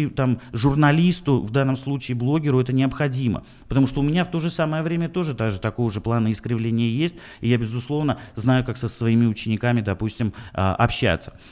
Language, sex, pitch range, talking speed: Russian, male, 120-155 Hz, 170 wpm